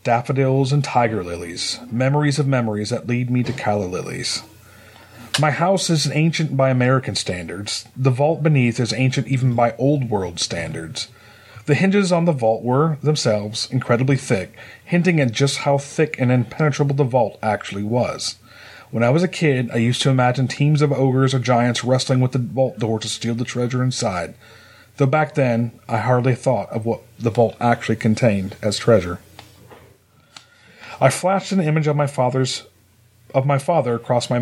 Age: 30-49